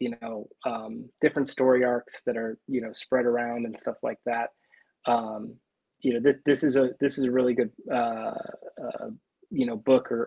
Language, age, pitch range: English, 20-39, 115-130 Hz